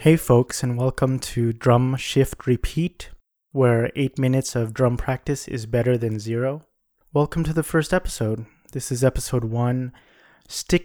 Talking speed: 155 wpm